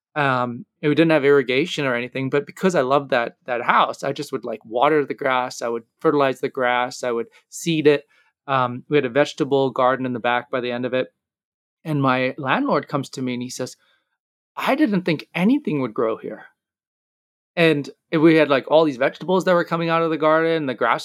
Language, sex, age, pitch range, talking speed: English, male, 20-39, 125-155 Hz, 220 wpm